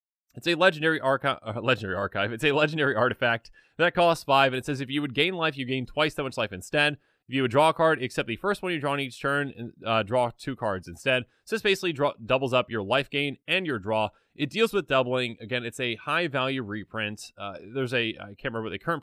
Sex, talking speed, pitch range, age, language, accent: male, 255 wpm, 110-150 Hz, 30-49, English, American